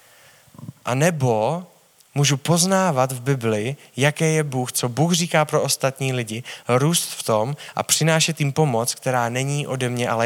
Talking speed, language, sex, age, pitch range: 160 wpm, Czech, male, 20-39, 125-160 Hz